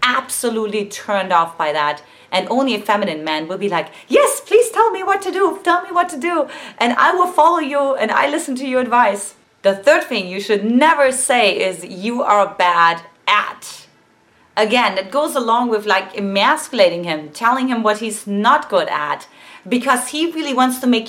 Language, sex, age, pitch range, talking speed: English, female, 30-49, 190-275 Hz, 195 wpm